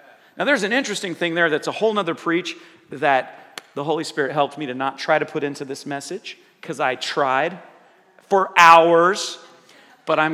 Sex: male